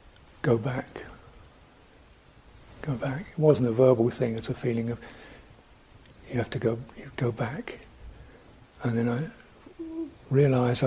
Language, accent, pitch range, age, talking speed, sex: English, British, 120-140 Hz, 60-79, 135 wpm, male